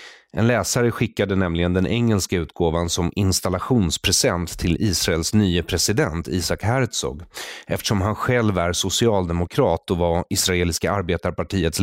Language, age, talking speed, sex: English, 30-49, 120 wpm, male